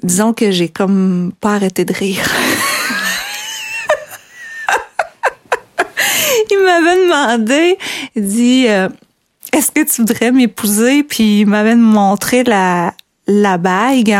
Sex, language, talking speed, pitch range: female, French, 110 wpm, 200-275 Hz